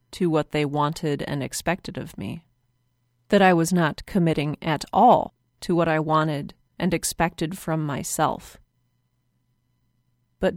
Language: English